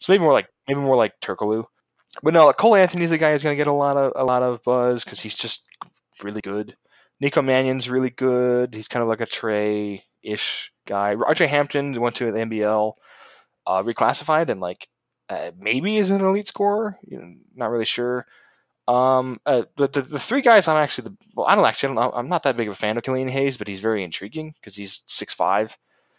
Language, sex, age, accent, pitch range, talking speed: English, male, 20-39, American, 105-150 Hz, 225 wpm